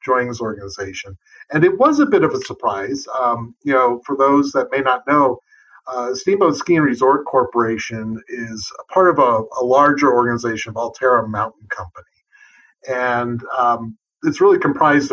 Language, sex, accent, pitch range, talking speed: English, male, American, 120-150 Hz, 165 wpm